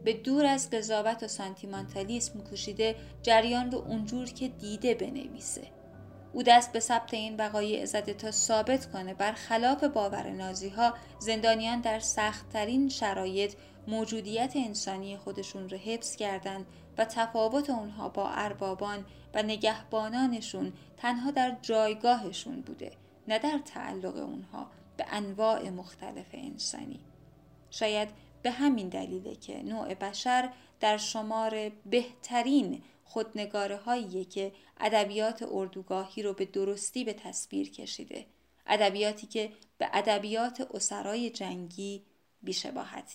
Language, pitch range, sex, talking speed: Persian, 200-235 Hz, female, 120 wpm